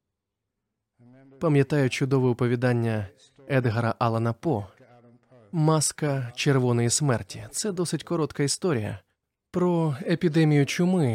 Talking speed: 85 wpm